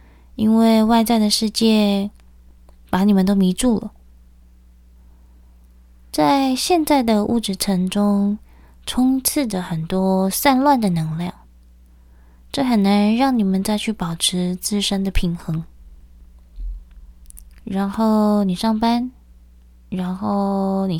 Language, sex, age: Chinese, female, 20-39